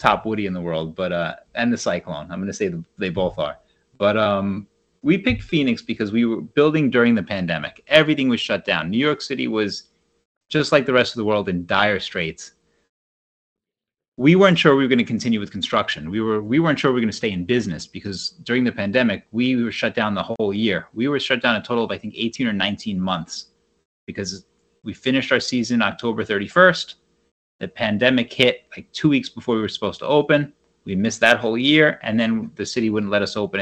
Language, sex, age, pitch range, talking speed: English, male, 30-49, 100-125 Hz, 225 wpm